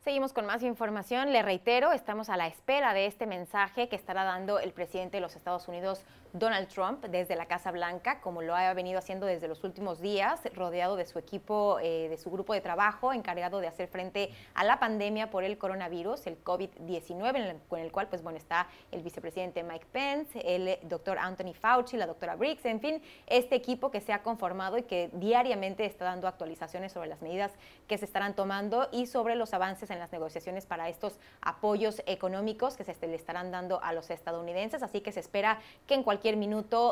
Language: Spanish